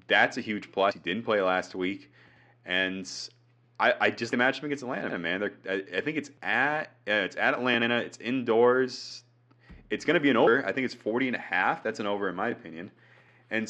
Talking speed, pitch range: 215 wpm, 95-130 Hz